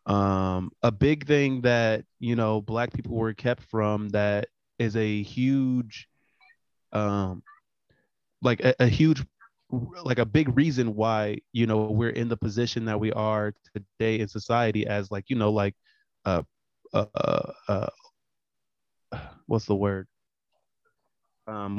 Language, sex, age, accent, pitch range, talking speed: English, male, 20-39, American, 105-130 Hz, 140 wpm